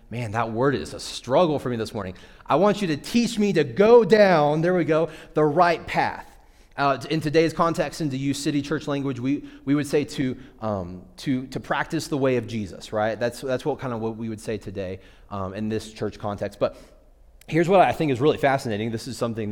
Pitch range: 115-155 Hz